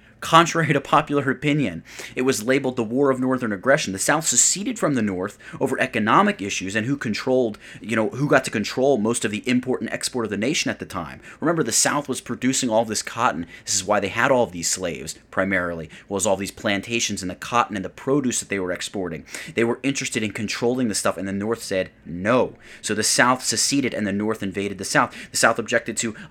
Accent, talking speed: American, 225 wpm